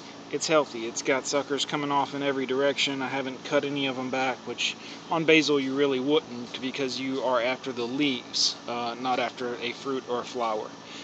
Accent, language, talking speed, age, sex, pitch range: American, English, 200 wpm, 30-49, male, 130-150 Hz